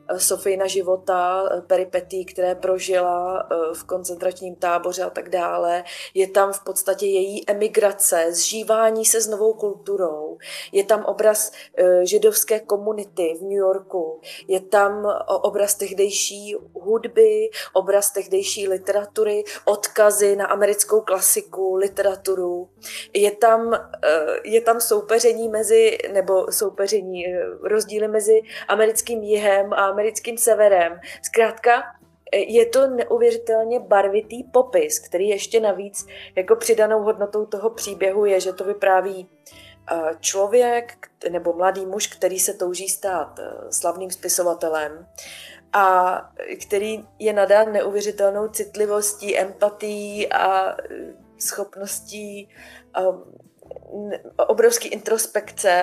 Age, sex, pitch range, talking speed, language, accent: 20-39, female, 190-220 Hz, 105 wpm, Czech, native